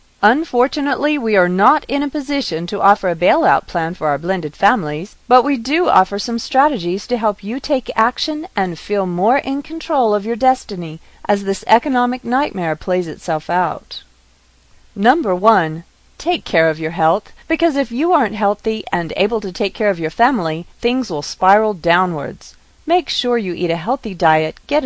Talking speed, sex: 180 wpm, female